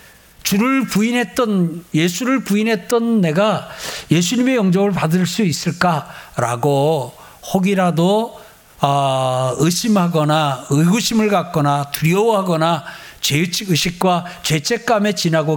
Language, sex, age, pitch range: Korean, male, 60-79, 145-215 Hz